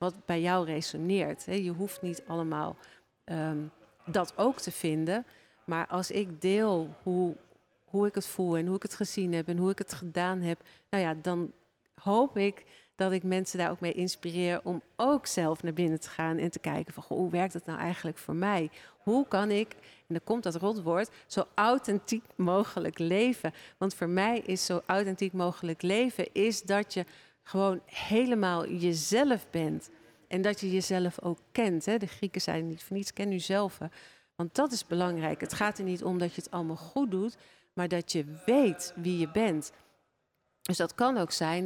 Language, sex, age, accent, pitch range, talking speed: Dutch, female, 40-59, Dutch, 165-200 Hz, 195 wpm